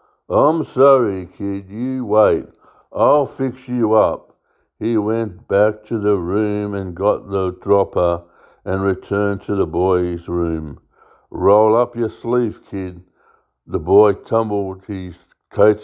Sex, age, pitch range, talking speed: male, 60-79, 90-110 Hz, 135 wpm